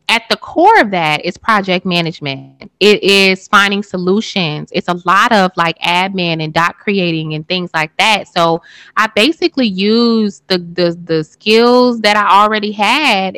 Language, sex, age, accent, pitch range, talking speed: English, female, 20-39, American, 170-210 Hz, 165 wpm